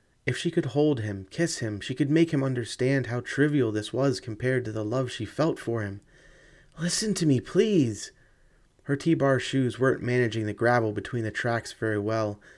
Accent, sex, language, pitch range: American, male, English, 110-135 Hz